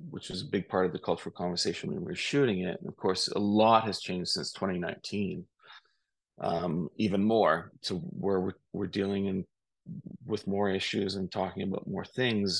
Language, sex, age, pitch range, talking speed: English, male, 30-49, 95-120 Hz, 180 wpm